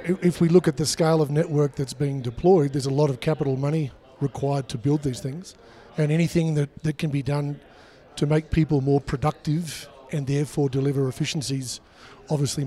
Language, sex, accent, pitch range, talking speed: English, male, Australian, 140-155 Hz, 185 wpm